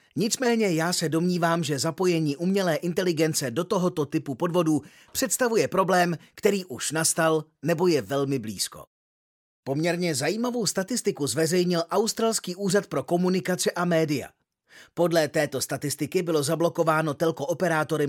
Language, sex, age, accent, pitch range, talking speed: Czech, male, 30-49, native, 145-200 Hz, 125 wpm